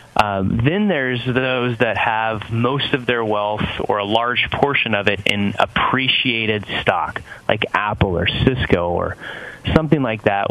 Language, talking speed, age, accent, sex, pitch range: English, 155 wpm, 30-49, American, male, 105-125 Hz